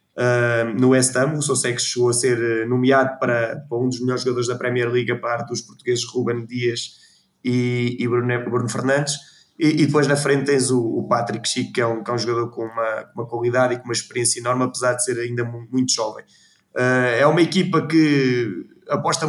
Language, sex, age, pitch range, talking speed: Portuguese, male, 20-39, 120-140 Hz, 215 wpm